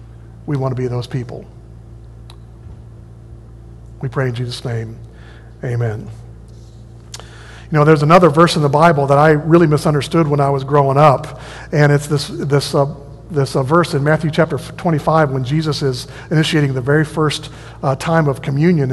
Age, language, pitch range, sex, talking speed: 50-69, English, 140-165 Hz, male, 170 wpm